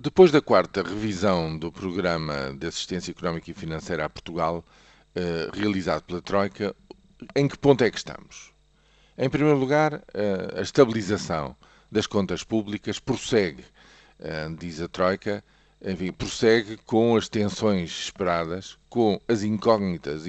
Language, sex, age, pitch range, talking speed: Portuguese, male, 50-69, 85-110 Hz, 135 wpm